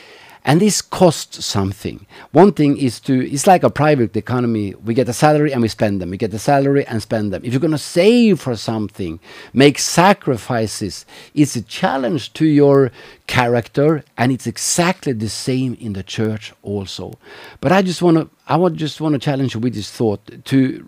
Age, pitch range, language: 50-69, 110-145 Hz, English